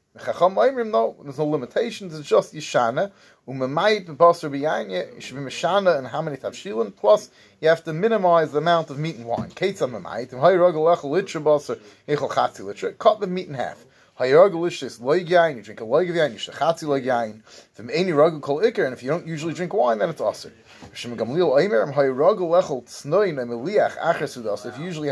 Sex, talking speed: male, 90 wpm